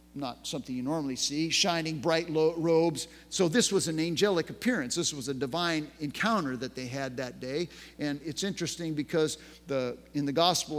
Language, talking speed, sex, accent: English, 180 wpm, male, American